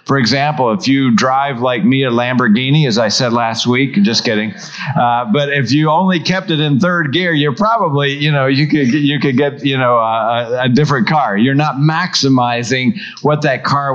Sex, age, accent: male, 50-69, American